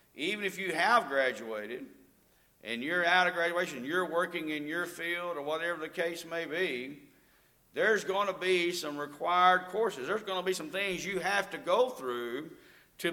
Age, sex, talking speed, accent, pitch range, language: 50-69, male, 185 wpm, American, 145-185 Hz, English